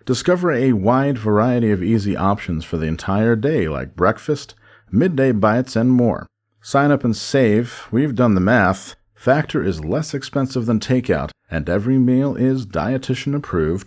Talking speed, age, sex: 160 wpm, 40-59, male